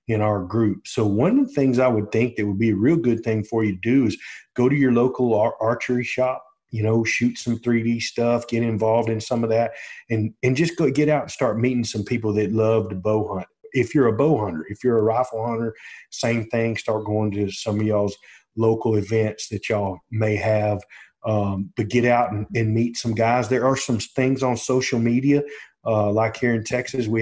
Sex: male